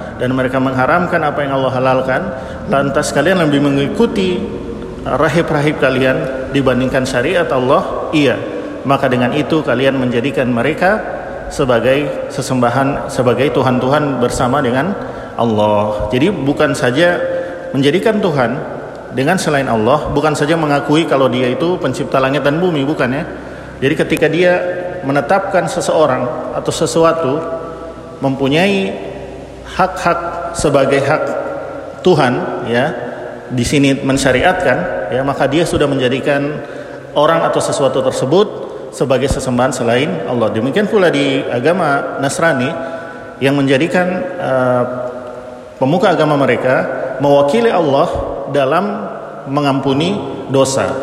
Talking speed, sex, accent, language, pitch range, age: 110 wpm, male, native, Indonesian, 130-165 Hz, 50-69